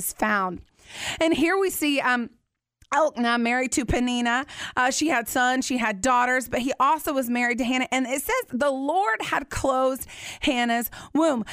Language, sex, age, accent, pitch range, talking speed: English, female, 30-49, American, 260-325 Hz, 170 wpm